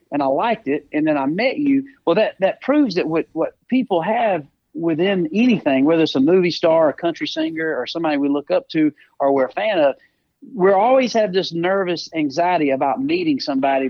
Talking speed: 205 wpm